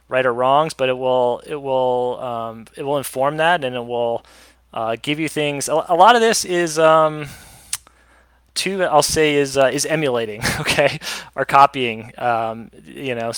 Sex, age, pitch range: male, 30-49, 115-140 Hz